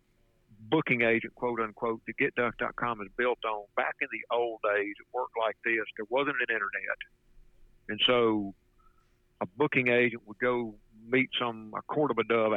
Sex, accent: male, American